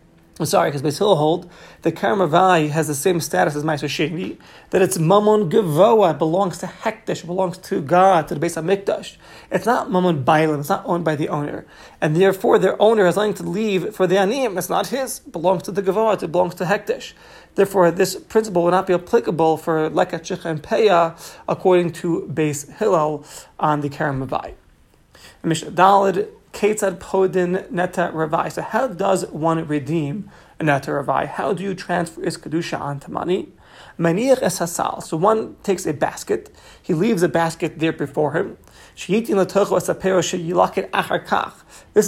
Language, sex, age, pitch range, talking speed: English, male, 30-49, 165-200 Hz, 160 wpm